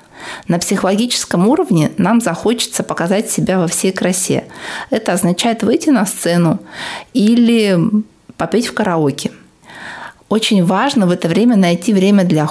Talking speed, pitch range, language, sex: 130 wpm, 165-210 Hz, Russian, female